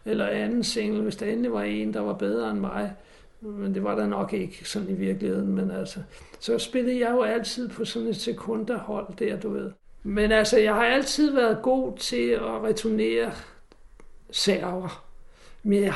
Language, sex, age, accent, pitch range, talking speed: Danish, male, 60-79, native, 195-230 Hz, 185 wpm